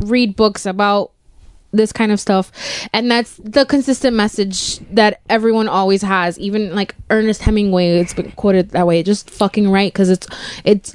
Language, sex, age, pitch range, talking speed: English, female, 20-39, 190-225 Hz, 170 wpm